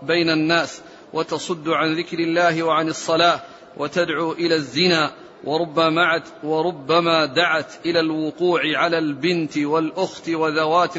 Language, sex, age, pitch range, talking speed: Arabic, male, 40-59, 160-180 Hz, 105 wpm